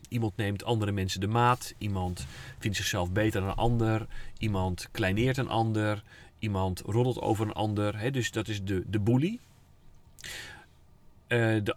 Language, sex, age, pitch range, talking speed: Dutch, male, 40-59, 95-120 Hz, 155 wpm